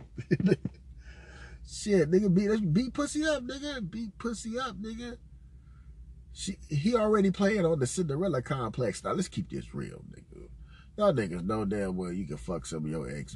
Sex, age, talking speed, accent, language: male, 30-49, 170 wpm, American, English